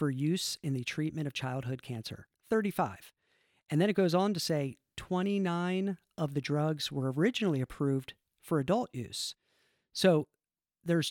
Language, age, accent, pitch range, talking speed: English, 50-69, American, 130-165 Hz, 145 wpm